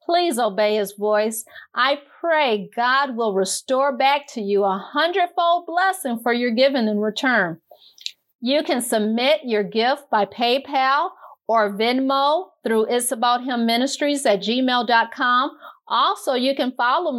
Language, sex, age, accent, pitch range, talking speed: English, female, 50-69, American, 220-280 Hz, 140 wpm